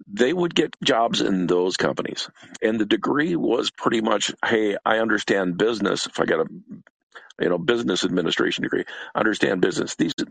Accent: American